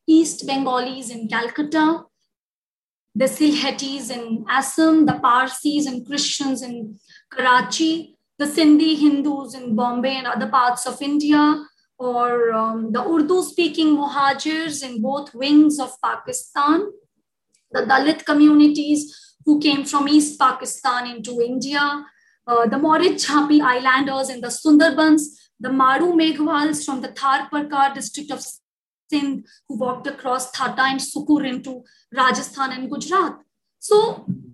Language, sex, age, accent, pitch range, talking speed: English, female, 20-39, Indian, 250-305 Hz, 120 wpm